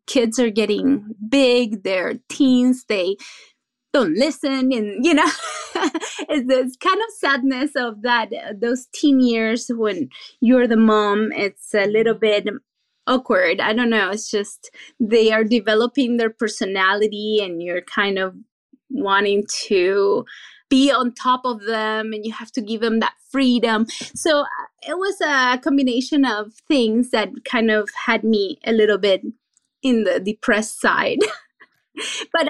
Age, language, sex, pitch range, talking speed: 20-39, English, female, 220-290 Hz, 150 wpm